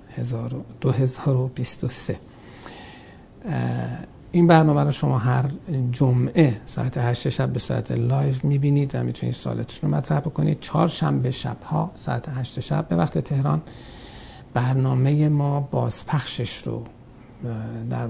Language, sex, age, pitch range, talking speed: Persian, male, 50-69, 120-145 Hz, 130 wpm